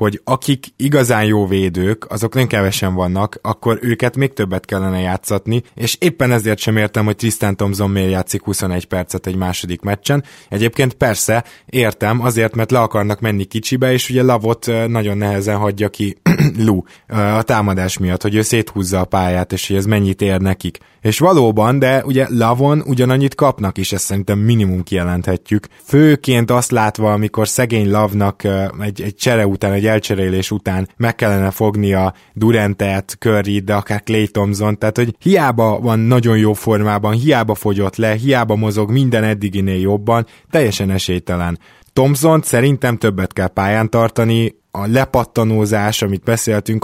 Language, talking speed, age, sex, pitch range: Hungarian, 155 wpm, 20-39, male, 100-115 Hz